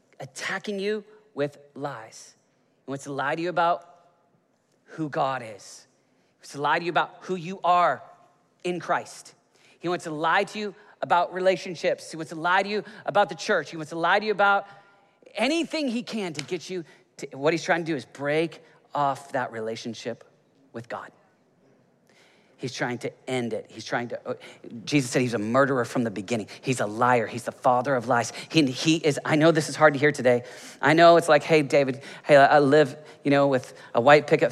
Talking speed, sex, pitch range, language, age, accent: 205 wpm, male, 130-175 Hz, English, 40-59, American